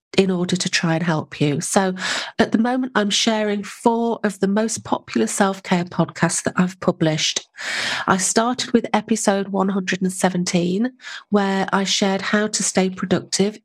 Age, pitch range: 40-59, 175-215 Hz